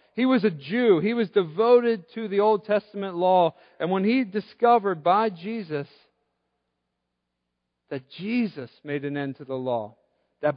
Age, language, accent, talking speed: 40-59, English, American, 155 wpm